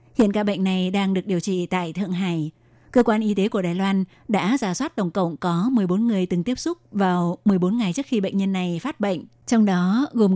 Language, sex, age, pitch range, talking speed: Vietnamese, female, 20-39, 185-220 Hz, 245 wpm